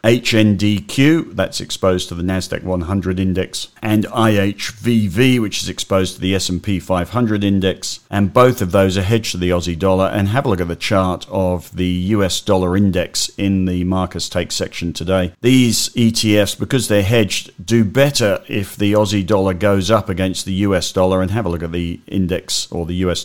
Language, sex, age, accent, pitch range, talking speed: English, male, 50-69, British, 90-100 Hz, 190 wpm